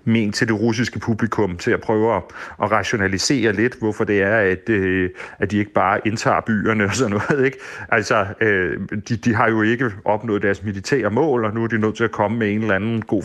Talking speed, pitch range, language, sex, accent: 230 wpm, 105-115 Hz, Danish, male, native